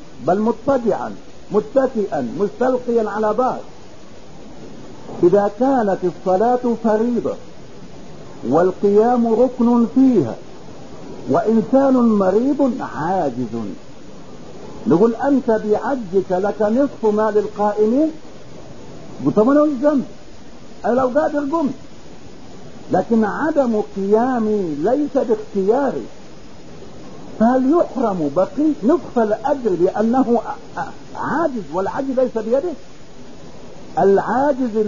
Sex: male